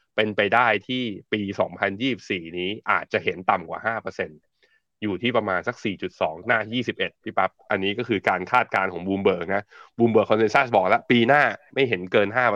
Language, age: Thai, 20-39